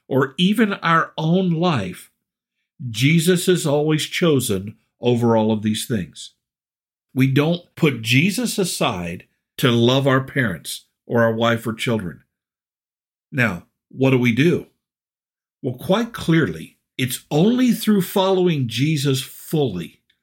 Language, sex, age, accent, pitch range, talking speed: English, male, 50-69, American, 120-175 Hz, 125 wpm